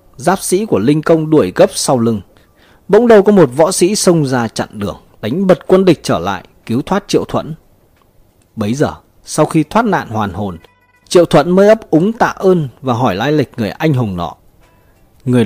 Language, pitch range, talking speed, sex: Vietnamese, 100-160 Hz, 205 wpm, male